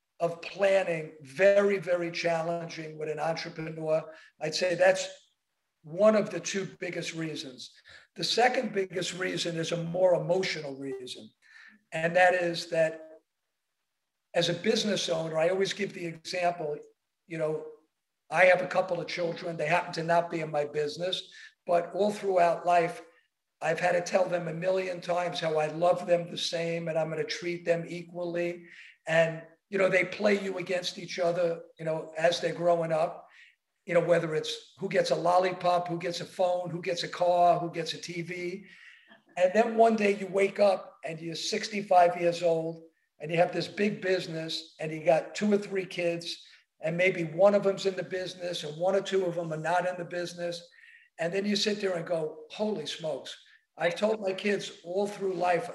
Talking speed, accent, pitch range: 185 wpm, American, 165-190 Hz